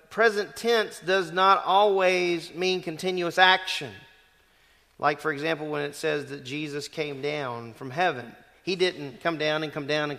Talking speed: 165 wpm